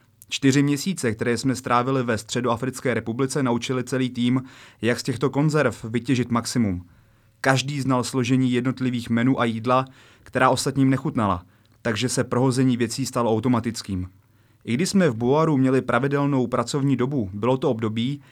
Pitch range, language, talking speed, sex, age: 115-140 Hz, Czech, 150 wpm, male, 30-49